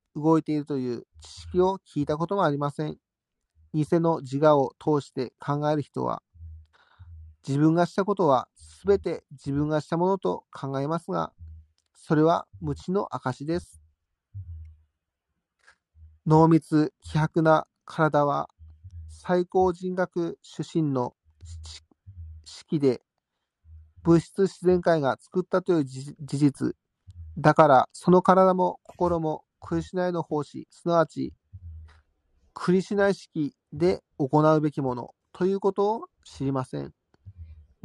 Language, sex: Japanese, male